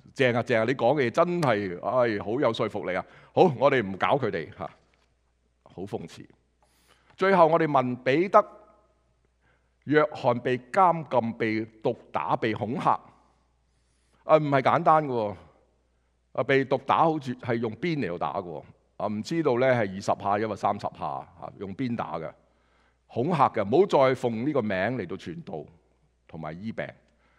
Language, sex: English, male